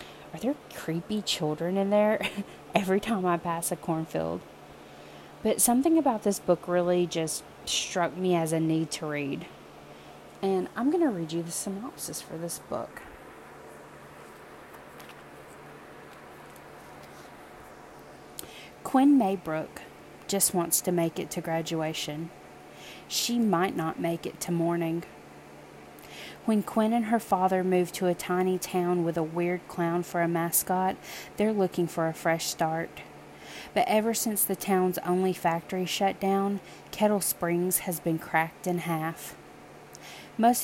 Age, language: 30-49, English